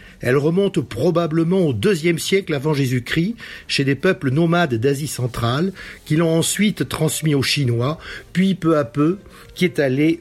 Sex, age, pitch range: male, 60-79, 125-185 Hz